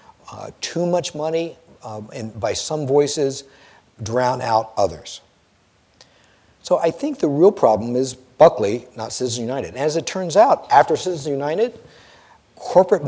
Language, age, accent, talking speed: English, 50-69, American, 145 wpm